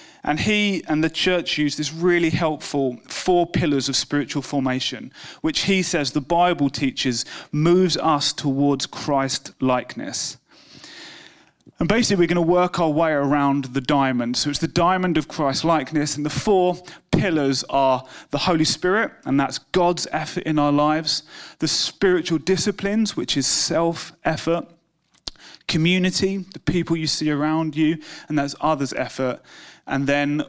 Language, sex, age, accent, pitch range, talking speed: English, male, 30-49, British, 140-170 Hz, 150 wpm